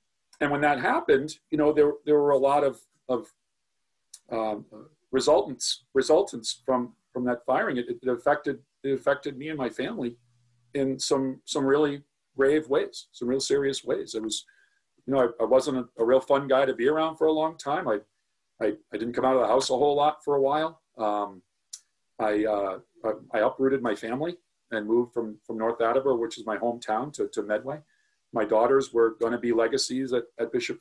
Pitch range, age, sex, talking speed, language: 120-145 Hz, 40-59, male, 205 wpm, English